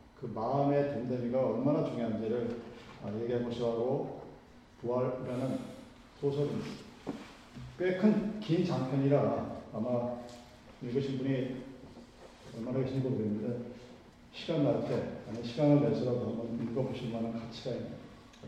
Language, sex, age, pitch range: Korean, male, 40-59, 125-175 Hz